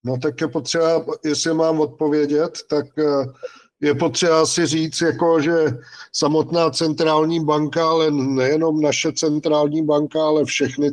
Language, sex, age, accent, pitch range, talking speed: Czech, male, 50-69, native, 135-155 Hz, 125 wpm